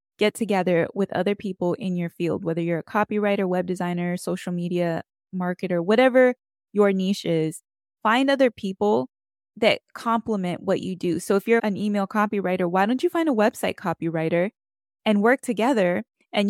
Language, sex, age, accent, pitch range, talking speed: English, female, 10-29, American, 180-220 Hz, 165 wpm